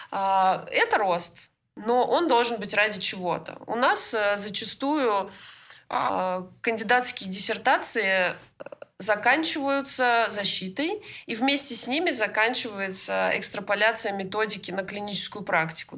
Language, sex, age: Russian, female, 20-39